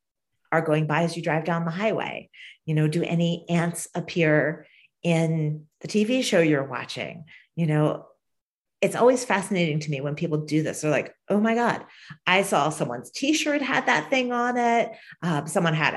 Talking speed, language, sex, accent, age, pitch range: 185 wpm, English, female, American, 40-59, 155-205 Hz